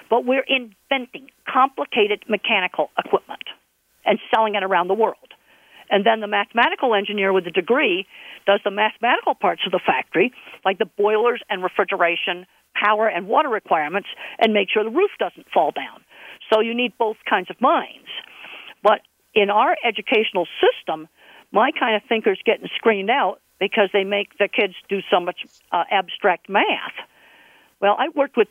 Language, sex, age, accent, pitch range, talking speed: English, female, 50-69, American, 195-240 Hz, 165 wpm